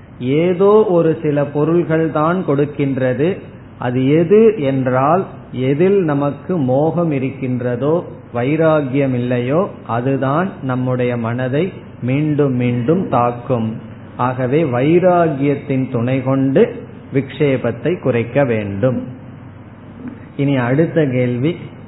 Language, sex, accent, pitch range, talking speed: Tamil, male, native, 125-160 Hz, 80 wpm